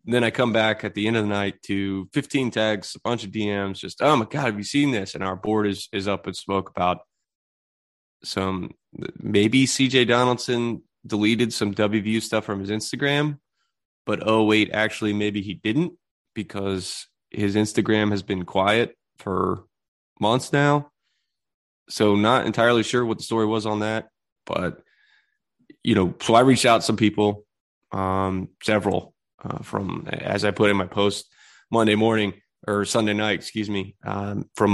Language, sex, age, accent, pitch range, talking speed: English, male, 20-39, American, 100-115 Hz, 175 wpm